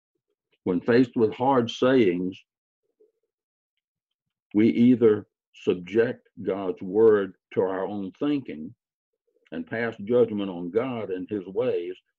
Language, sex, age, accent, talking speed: English, male, 60-79, American, 110 wpm